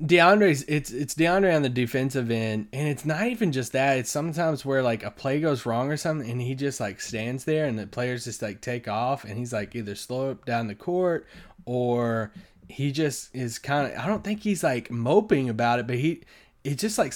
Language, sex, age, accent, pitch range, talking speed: English, male, 20-39, American, 115-150 Hz, 225 wpm